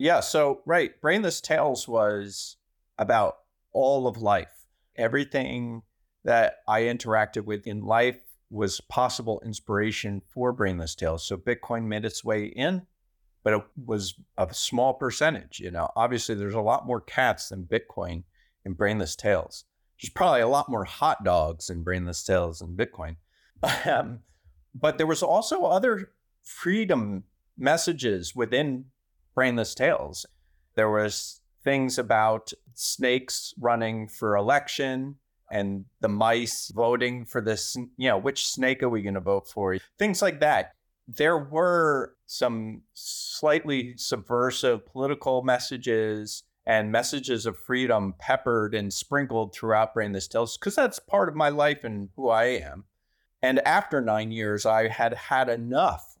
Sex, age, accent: male, 30-49, American